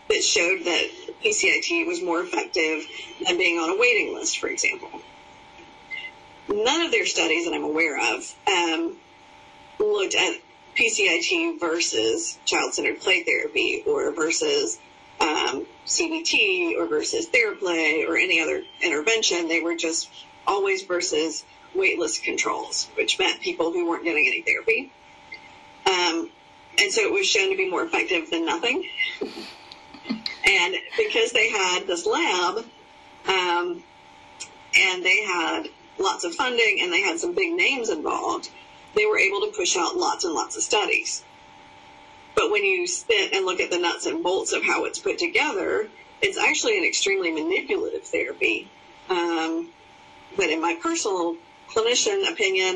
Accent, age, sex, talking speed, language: American, 40-59, female, 150 wpm, English